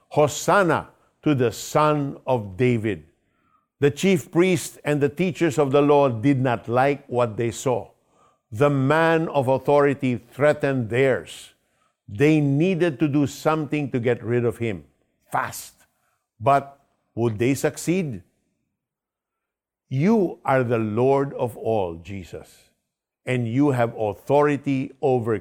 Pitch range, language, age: 115-155 Hz, Filipino, 50-69